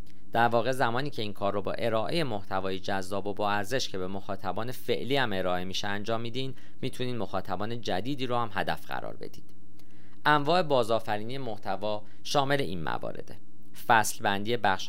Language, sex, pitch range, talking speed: Persian, male, 100-120 Hz, 160 wpm